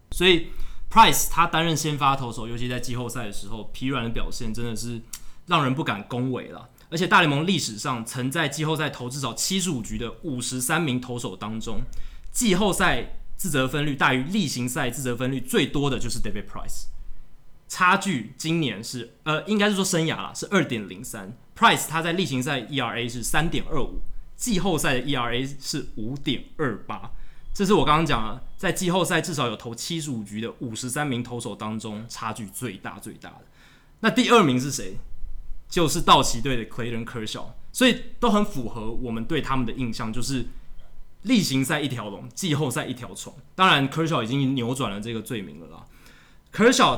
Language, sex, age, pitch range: Chinese, male, 20-39, 115-160 Hz